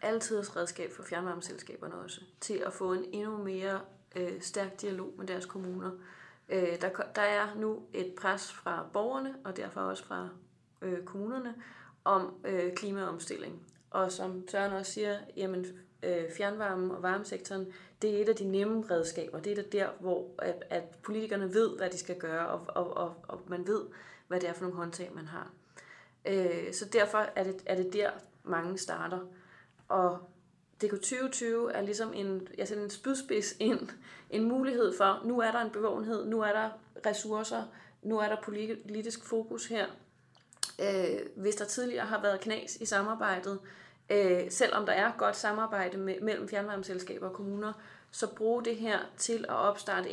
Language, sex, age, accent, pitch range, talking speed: Danish, female, 30-49, native, 185-215 Hz, 165 wpm